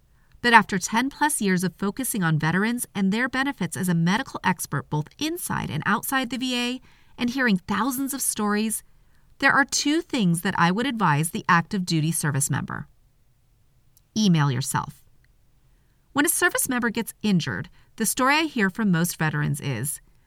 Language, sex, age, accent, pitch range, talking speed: English, female, 30-49, American, 165-245 Hz, 165 wpm